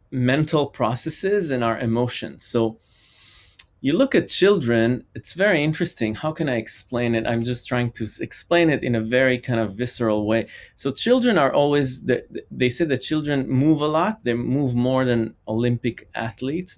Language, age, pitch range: English, 30-49, 110-130 Hz